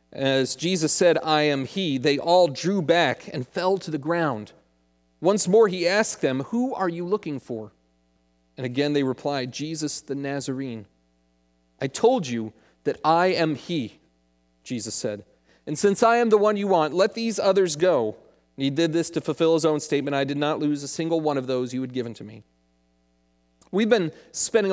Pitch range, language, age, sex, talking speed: 130-190 Hz, English, 40-59, male, 190 wpm